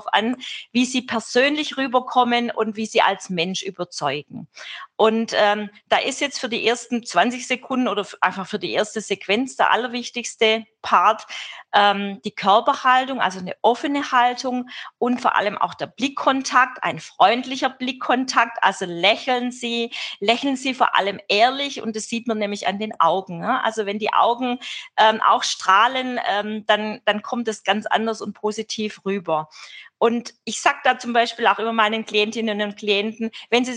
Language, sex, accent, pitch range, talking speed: German, female, German, 210-255 Hz, 170 wpm